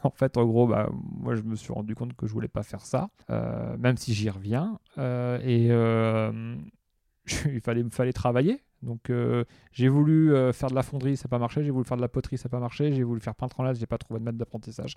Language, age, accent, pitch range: French, 30-49, French, 115-135 Hz